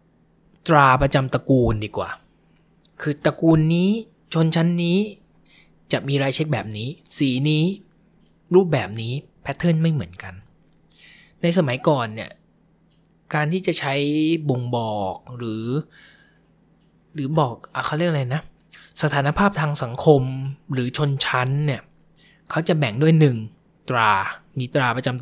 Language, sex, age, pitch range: Thai, male, 20-39, 130-170 Hz